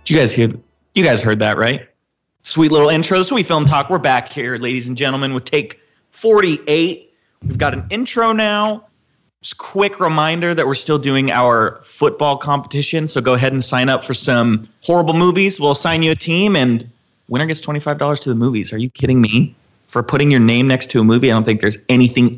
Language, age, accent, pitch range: English, 30-49, American, 120-165 Hz